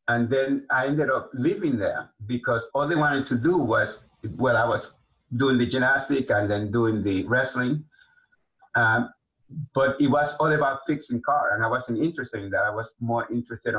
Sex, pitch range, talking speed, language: male, 115-145 Hz, 185 wpm, English